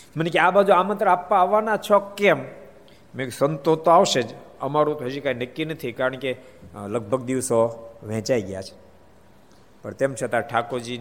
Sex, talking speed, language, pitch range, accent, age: male, 110 wpm, Gujarati, 130-210 Hz, native, 50-69